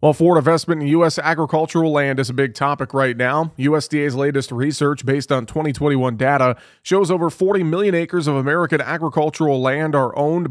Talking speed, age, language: 175 wpm, 30-49, English